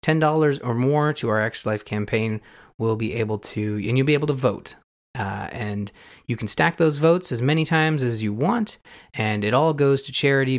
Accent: American